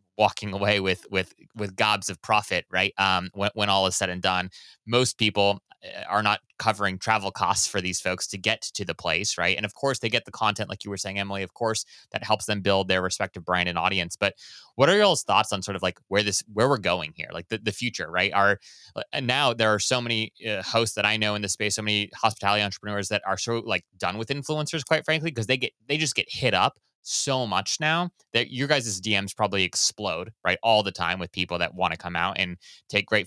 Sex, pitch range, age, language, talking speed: male, 95-120 Hz, 20-39, English, 245 wpm